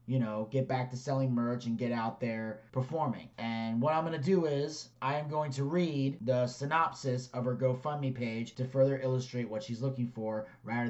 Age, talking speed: 30-49, 210 wpm